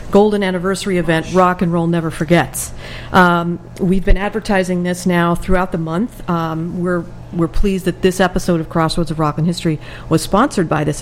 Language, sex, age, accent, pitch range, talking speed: English, female, 50-69, American, 160-185 Hz, 185 wpm